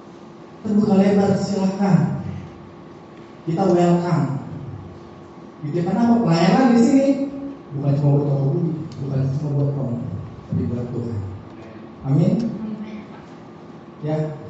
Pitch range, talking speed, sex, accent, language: 145-195 Hz, 90 wpm, male, native, Indonesian